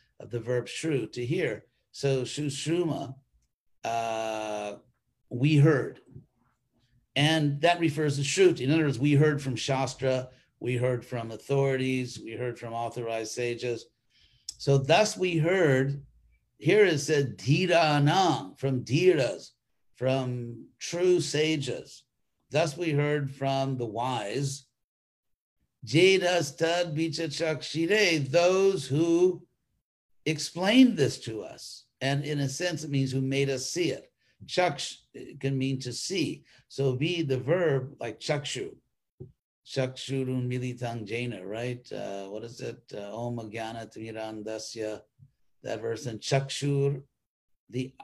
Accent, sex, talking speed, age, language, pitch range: American, male, 125 wpm, 50-69, English, 120-155 Hz